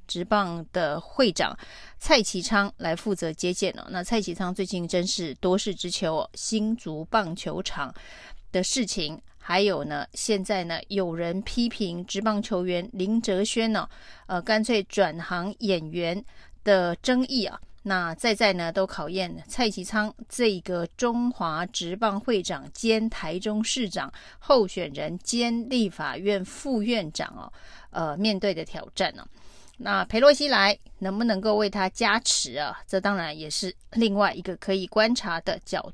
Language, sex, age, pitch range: Chinese, female, 30-49, 180-220 Hz